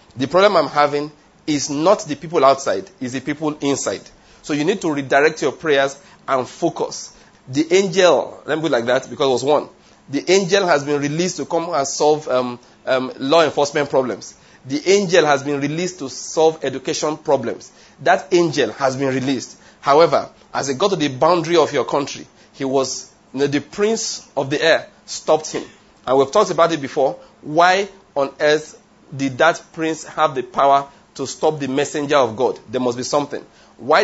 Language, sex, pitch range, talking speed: English, male, 140-175 Hz, 185 wpm